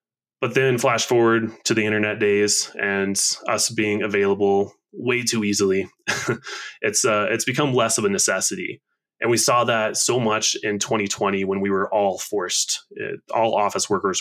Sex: male